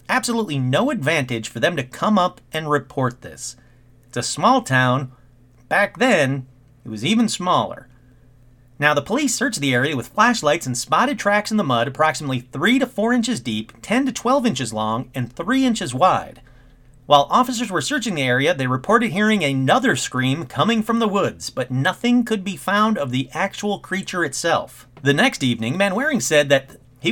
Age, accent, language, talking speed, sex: 40-59, American, English, 180 wpm, male